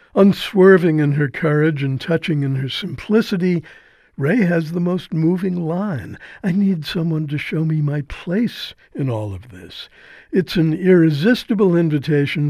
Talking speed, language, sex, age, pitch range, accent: 150 wpm, English, male, 60-79, 145-180 Hz, American